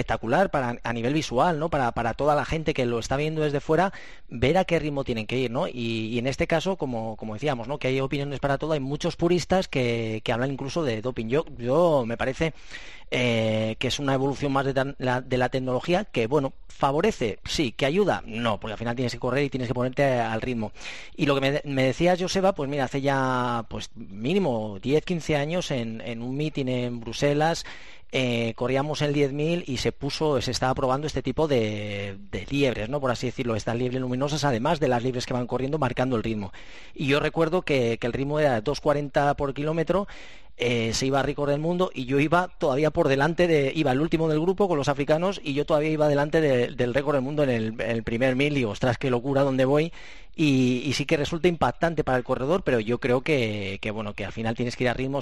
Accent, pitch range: Spanish, 120-150 Hz